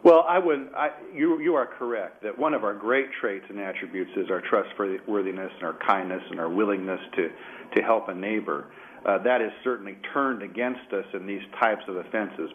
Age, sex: 50-69, male